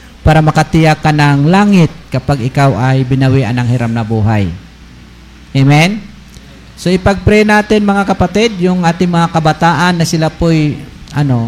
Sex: male